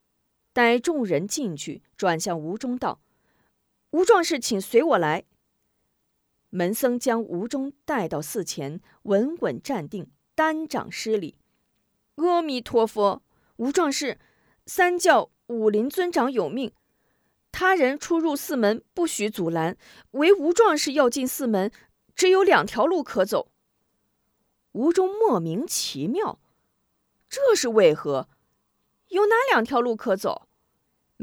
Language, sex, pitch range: Chinese, female, 235-360 Hz